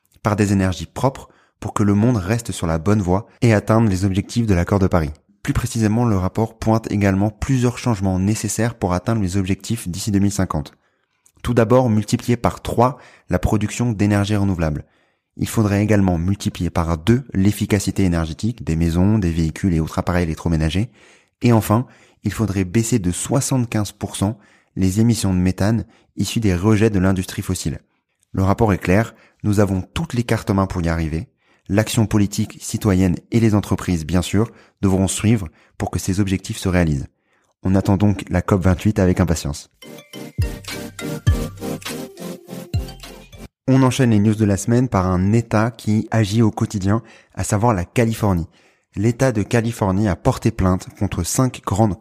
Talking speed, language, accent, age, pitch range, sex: 165 wpm, French, French, 20-39, 95-115 Hz, male